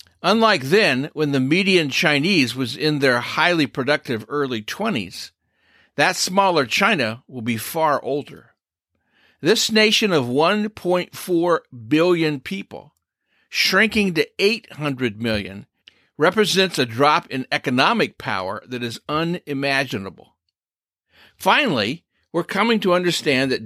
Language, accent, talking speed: English, American, 115 wpm